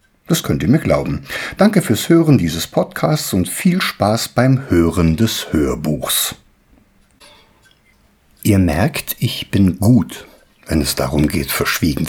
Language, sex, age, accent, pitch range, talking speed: German, male, 60-79, German, 85-135 Hz, 135 wpm